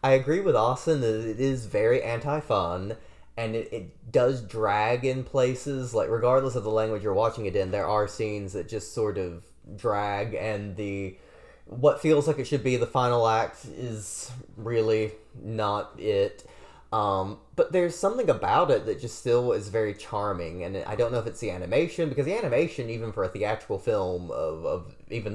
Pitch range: 105-140 Hz